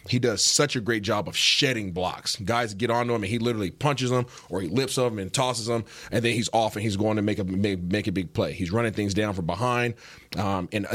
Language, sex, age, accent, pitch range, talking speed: English, male, 30-49, American, 95-115 Hz, 270 wpm